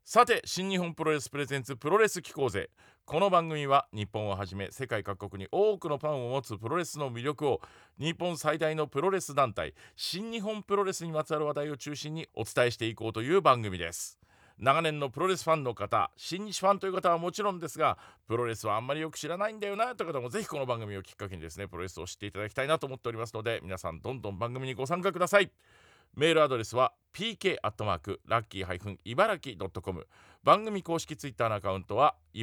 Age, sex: 40-59, male